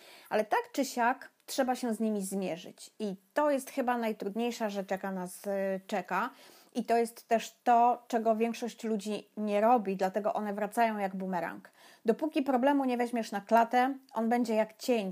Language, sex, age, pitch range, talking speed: Polish, female, 30-49, 200-250 Hz, 170 wpm